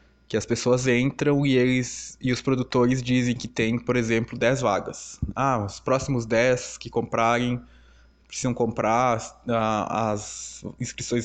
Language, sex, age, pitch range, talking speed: Portuguese, male, 20-39, 110-130 Hz, 140 wpm